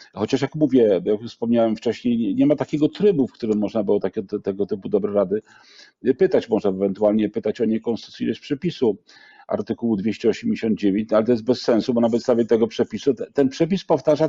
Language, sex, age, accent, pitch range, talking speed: Polish, male, 40-59, native, 115-165 Hz, 170 wpm